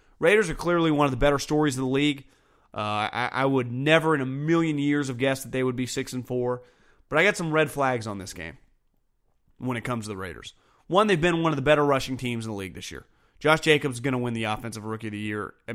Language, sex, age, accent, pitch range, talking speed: English, male, 30-49, American, 115-150 Hz, 270 wpm